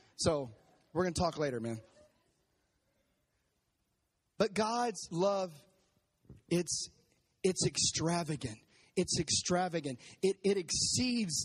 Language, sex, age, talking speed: English, male, 30-49, 95 wpm